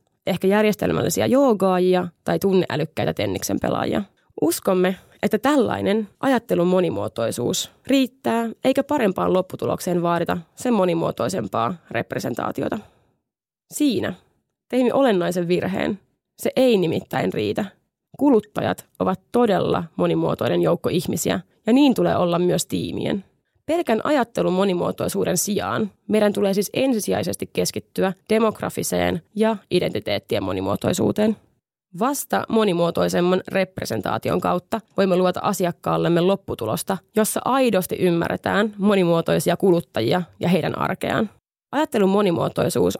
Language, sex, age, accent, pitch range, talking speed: Finnish, female, 20-39, native, 180-225 Hz, 100 wpm